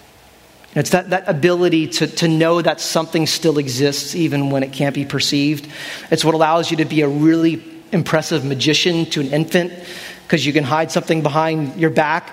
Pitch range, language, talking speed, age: 155-195 Hz, English, 185 wpm, 30-49